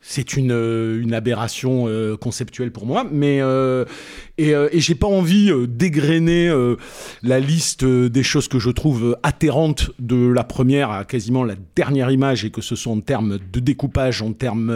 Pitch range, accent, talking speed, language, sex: 120-150 Hz, French, 195 wpm, French, male